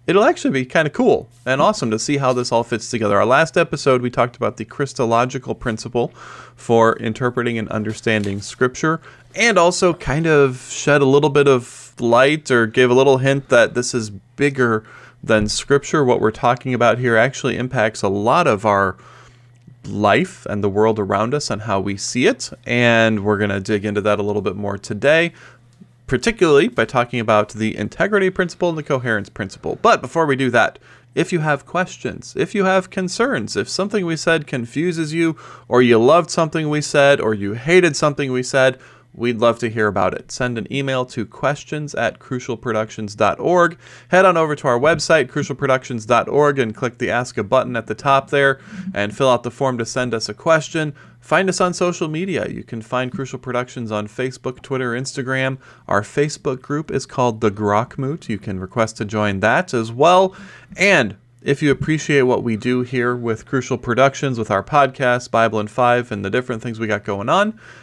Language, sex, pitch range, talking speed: English, male, 115-145 Hz, 195 wpm